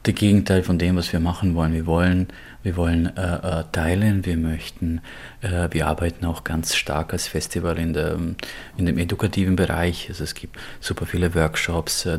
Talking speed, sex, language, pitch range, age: 185 wpm, male, German, 85-95 Hz, 30-49